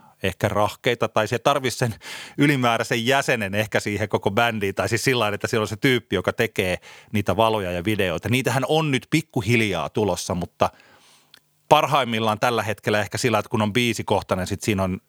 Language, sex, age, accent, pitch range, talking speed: Finnish, male, 30-49, native, 100-130 Hz, 175 wpm